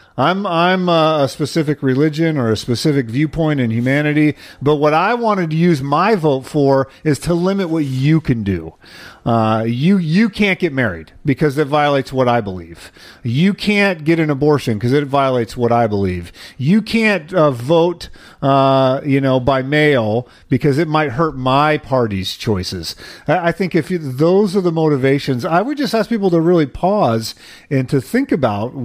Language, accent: English, American